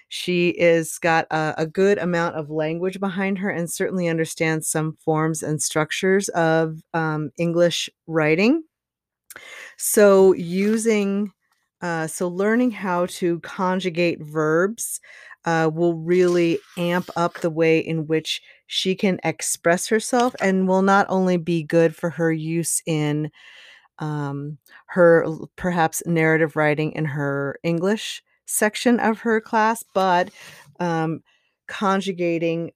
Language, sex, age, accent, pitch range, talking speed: English, female, 30-49, American, 160-190 Hz, 125 wpm